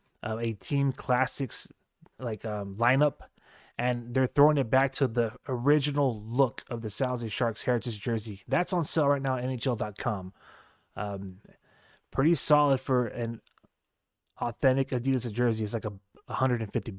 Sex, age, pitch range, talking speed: male, 20-39, 110-130 Hz, 145 wpm